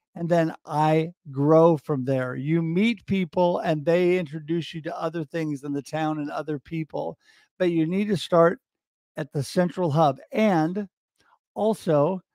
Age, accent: 50-69, American